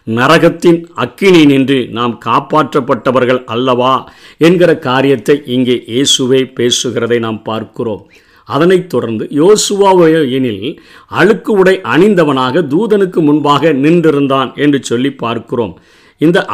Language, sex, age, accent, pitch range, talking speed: Tamil, male, 50-69, native, 130-175 Hz, 95 wpm